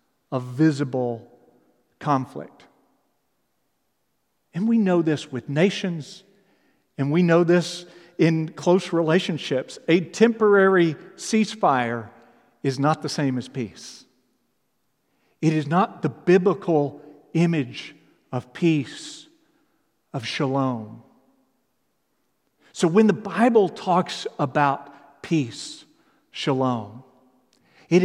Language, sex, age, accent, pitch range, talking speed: English, male, 50-69, American, 155-235 Hz, 95 wpm